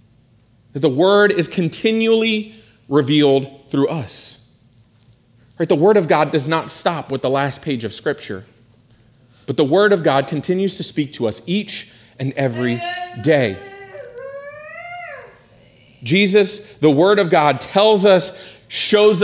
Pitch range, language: 150-215 Hz, English